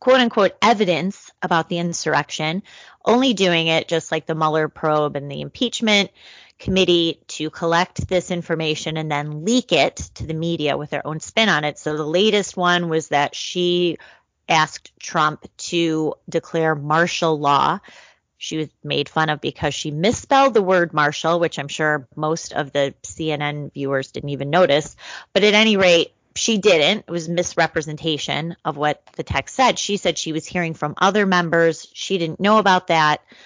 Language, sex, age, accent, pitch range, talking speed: English, female, 30-49, American, 150-190 Hz, 175 wpm